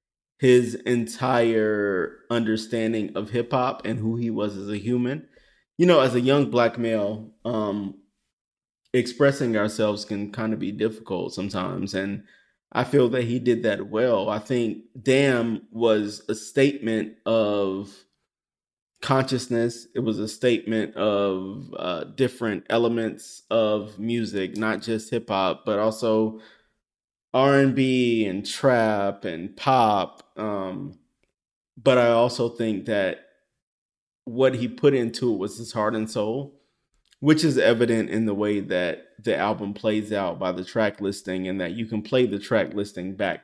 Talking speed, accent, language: 145 wpm, American, English